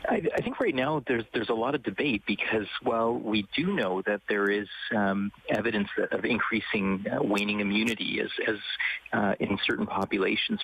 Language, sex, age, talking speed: English, male, 40-59, 180 wpm